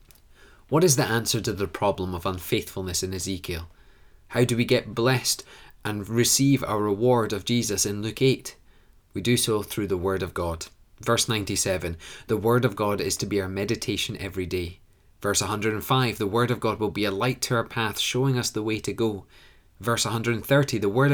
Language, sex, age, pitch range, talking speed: English, male, 20-39, 95-120 Hz, 195 wpm